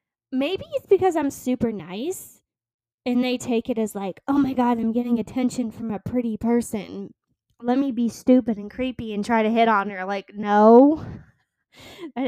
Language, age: English, 10-29